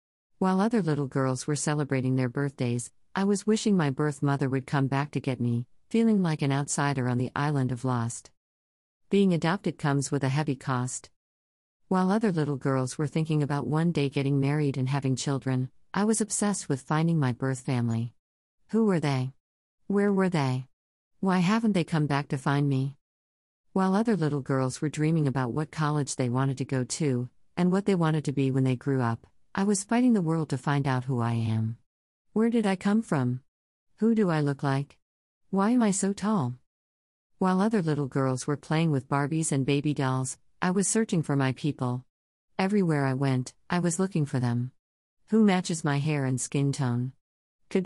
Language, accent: English, American